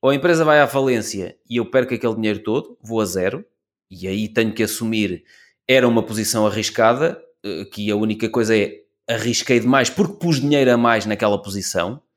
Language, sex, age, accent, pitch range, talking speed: Portuguese, male, 20-39, Portuguese, 115-160 Hz, 185 wpm